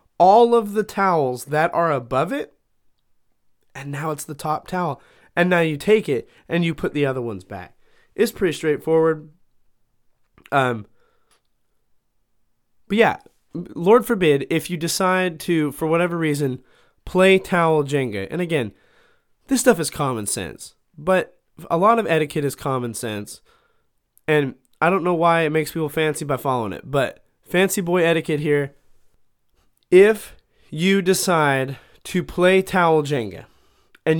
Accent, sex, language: American, male, English